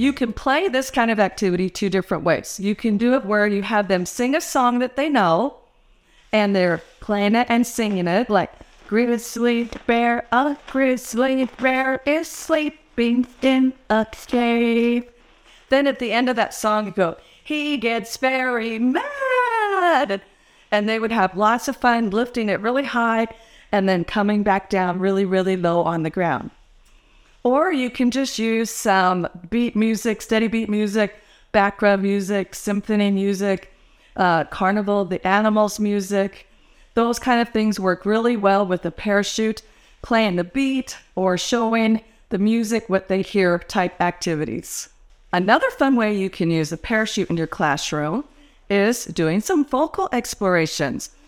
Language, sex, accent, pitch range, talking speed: English, female, American, 195-245 Hz, 160 wpm